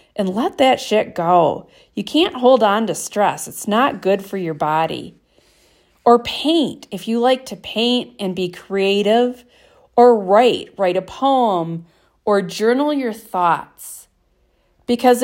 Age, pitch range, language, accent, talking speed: 40-59, 185-250 Hz, English, American, 145 wpm